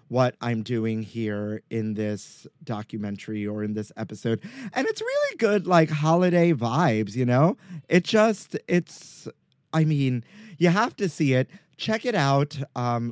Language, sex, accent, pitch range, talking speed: English, male, American, 110-145 Hz, 155 wpm